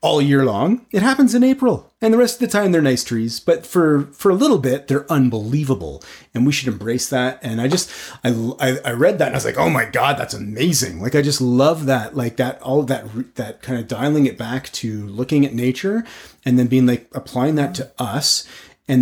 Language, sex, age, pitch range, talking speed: English, male, 30-49, 120-150 Hz, 235 wpm